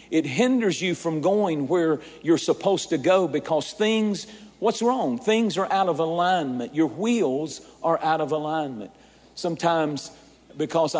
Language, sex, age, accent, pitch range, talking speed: English, male, 50-69, American, 155-210 Hz, 145 wpm